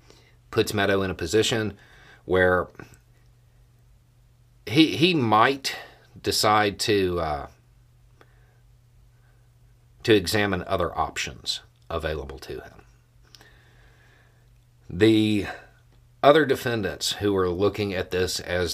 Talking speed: 90 wpm